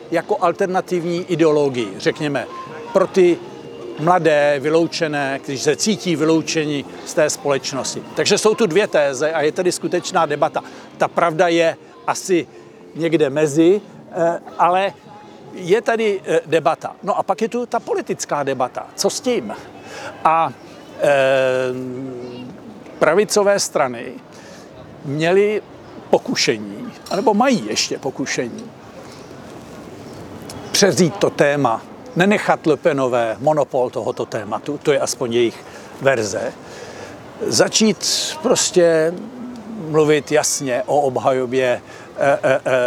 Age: 60-79